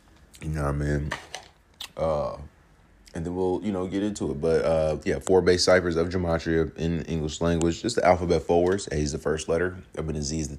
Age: 30-49